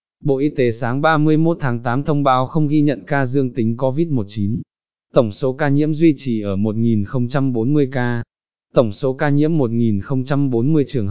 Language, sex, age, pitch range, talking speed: Vietnamese, male, 20-39, 120-145 Hz, 165 wpm